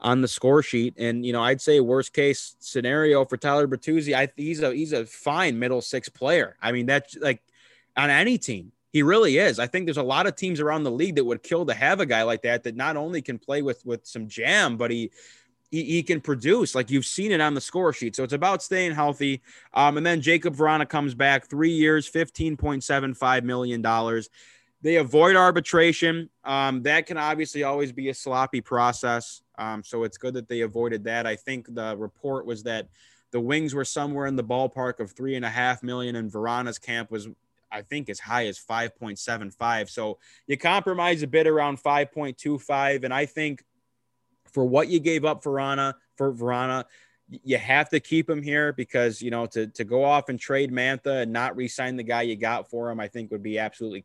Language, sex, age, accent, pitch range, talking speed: English, male, 20-39, American, 120-145 Hz, 210 wpm